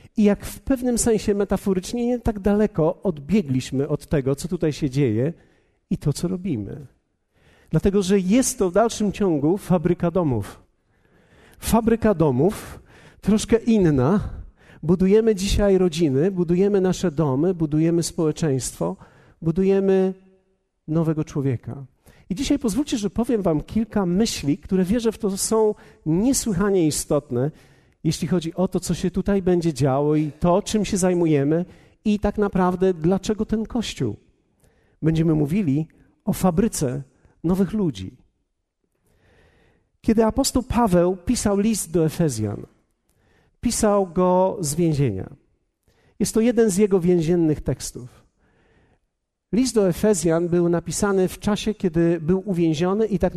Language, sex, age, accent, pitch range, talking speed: Polish, male, 50-69, native, 155-205 Hz, 130 wpm